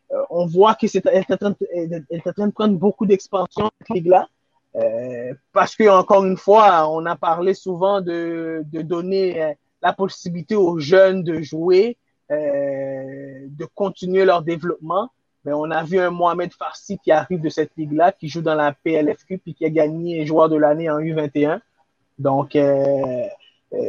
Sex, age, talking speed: male, 30-49, 165 wpm